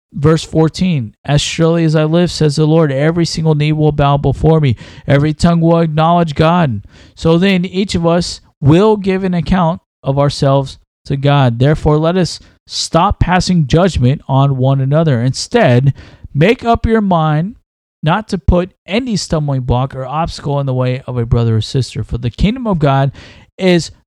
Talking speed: 175 wpm